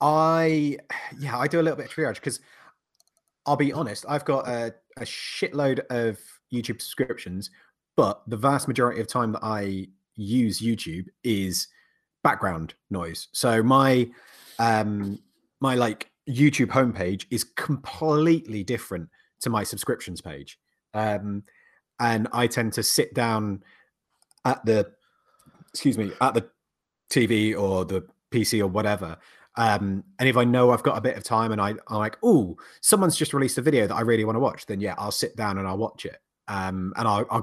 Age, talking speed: 30-49, 170 wpm